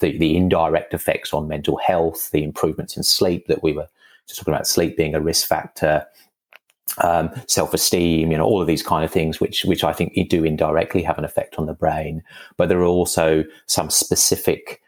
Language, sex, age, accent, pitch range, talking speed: English, male, 30-49, British, 80-90 Hz, 205 wpm